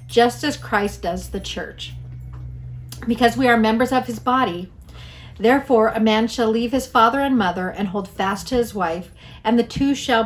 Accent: American